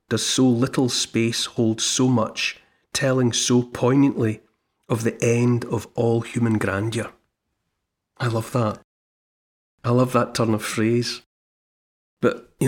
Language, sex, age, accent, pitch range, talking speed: English, male, 40-59, British, 110-130 Hz, 135 wpm